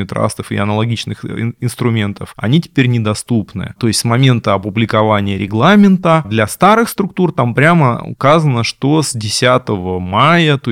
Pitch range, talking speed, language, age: 110-155 Hz, 135 wpm, Russian, 20-39